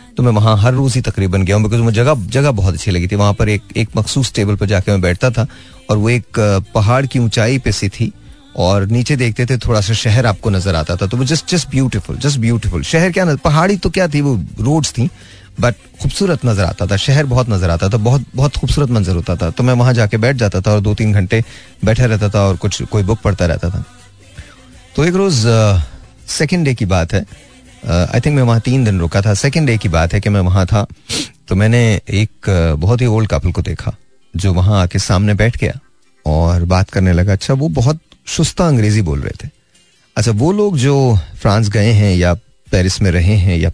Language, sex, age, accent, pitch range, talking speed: Hindi, male, 30-49, native, 95-125 Hz, 225 wpm